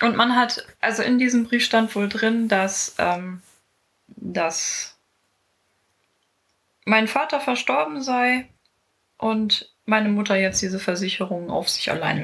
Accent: German